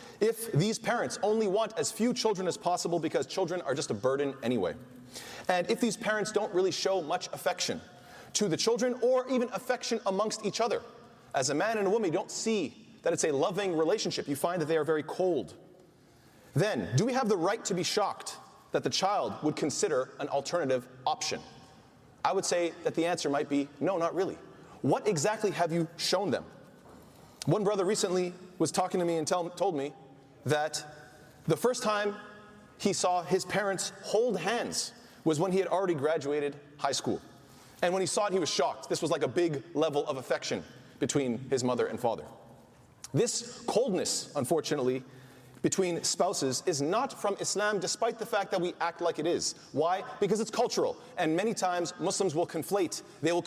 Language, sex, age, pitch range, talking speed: English, male, 30-49, 150-205 Hz, 190 wpm